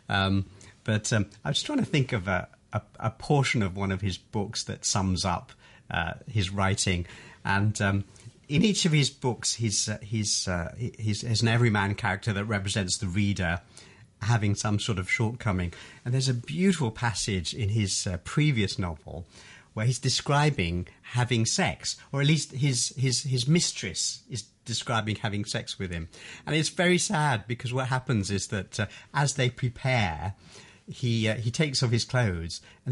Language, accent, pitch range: English, British, 105-140 Hz